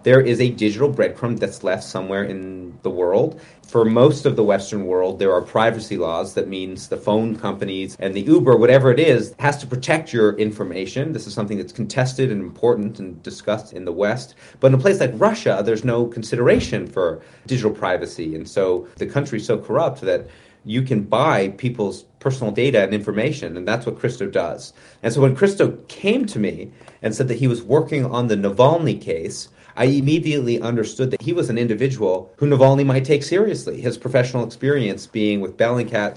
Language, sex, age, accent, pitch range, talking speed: English, male, 30-49, American, 105-135 Hz, 195 wpm